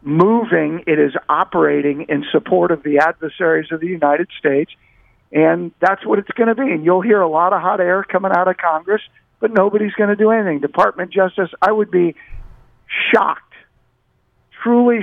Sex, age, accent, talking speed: male, 50-69, American, 180 wpm